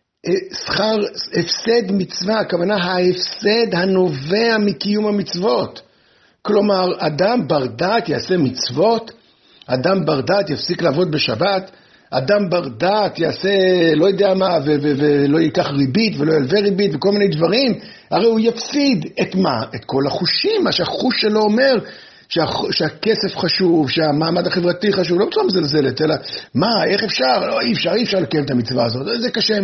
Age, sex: 60-79, male